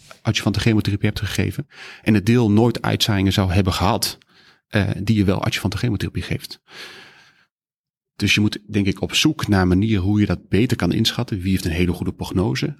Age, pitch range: 40-59, 95-115 Hz